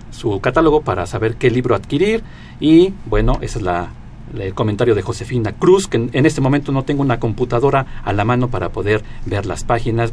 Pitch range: 110-135 Hz